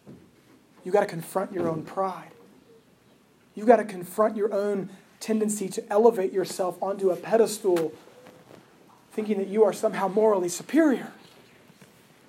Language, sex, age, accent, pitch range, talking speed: English, male, 30-49, American, 185-225 Hz, 130 wpm